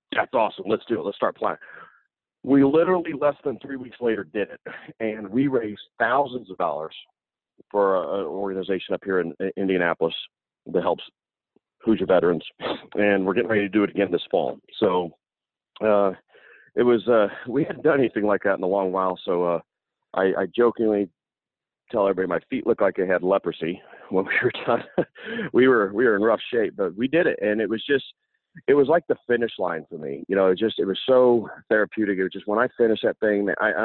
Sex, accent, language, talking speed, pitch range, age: male, American, English, 215 wpm, 95-110 Hz, 40-59